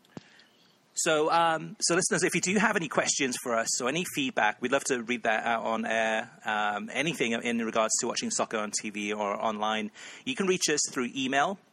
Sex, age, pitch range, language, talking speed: male, 30-49, 115-180 Hz, English, 205 wpm